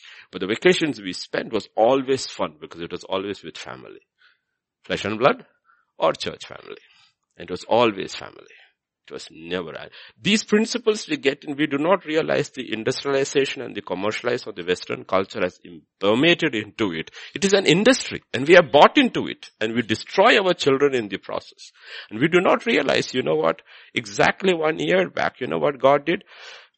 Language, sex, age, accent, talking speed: English, male, 50-69, Indian, 190 wpm